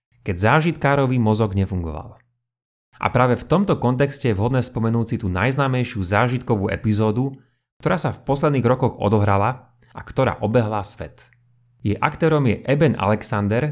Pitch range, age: 105-130 Hz, 30-49